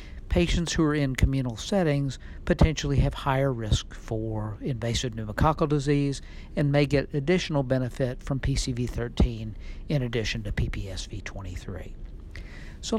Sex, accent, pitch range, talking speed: male, American, 110-145 Hz, 120 wpm